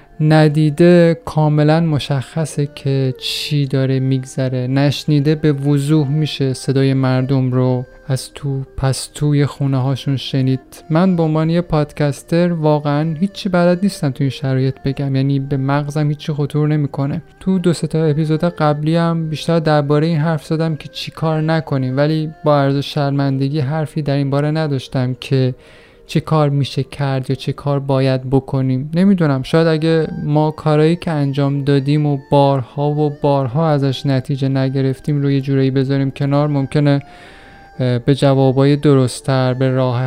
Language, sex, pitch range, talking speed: Persian, male, 135-150 Hz, 150 wpm